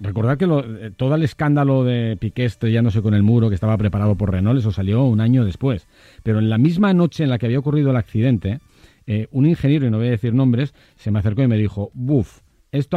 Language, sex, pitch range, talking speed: Spanish, male, 100-135 Hz, 255 wpm